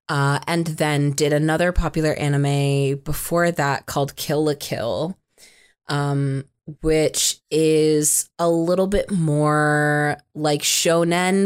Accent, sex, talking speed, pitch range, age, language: American, female, 115 wpm, 150-180 Hz, 20-39, English